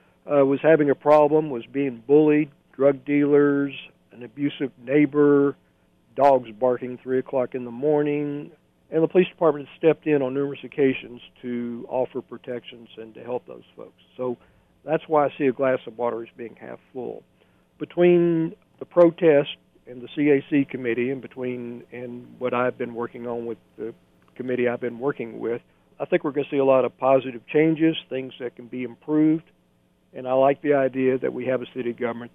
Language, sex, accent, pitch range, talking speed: English, male, American, 120-145 Hz, 185 wpm